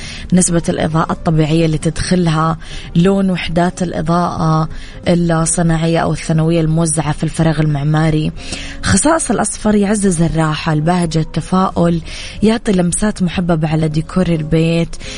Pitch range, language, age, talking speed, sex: 165-190 Hz, English, 20-39, 105 wpm, female